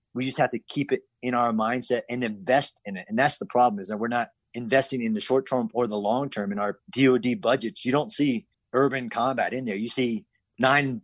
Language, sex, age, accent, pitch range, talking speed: English, male, 30-49, American, 115-150 Hz, 240 wpm